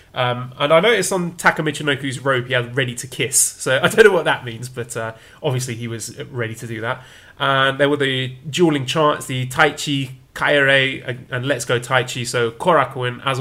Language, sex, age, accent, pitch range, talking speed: English, male, 30-49, British, 120-155 Hz, 200 wpm